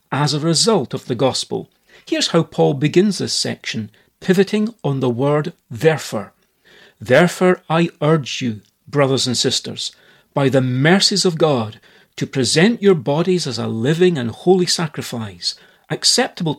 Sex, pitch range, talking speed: male, 130-180 Hz, 145 wpm